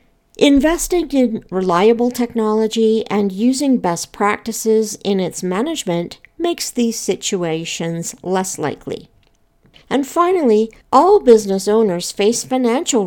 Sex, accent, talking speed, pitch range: female, American, 105 wpm, 195-250 Hz